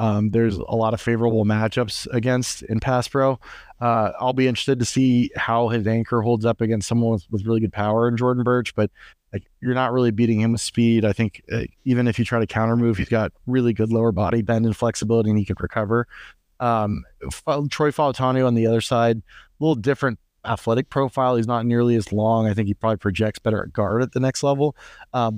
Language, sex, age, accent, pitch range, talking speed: English, male, 20-39, American, 110-120 Hz, 220 wpm